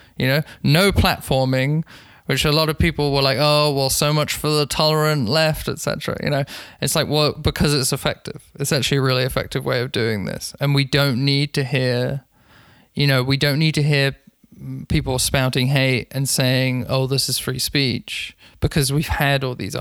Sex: male